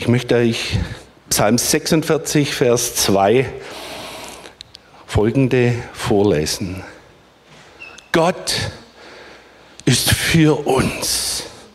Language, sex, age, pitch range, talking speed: German, male, 50-69, 130-200 Hz, 65 wpm